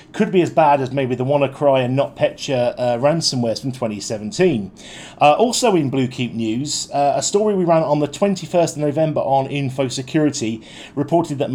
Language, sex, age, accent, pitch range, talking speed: English, male, 40-59, British, 130-165 Hz, 170 wpm